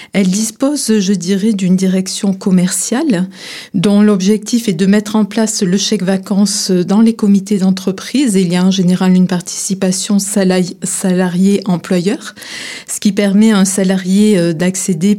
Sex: female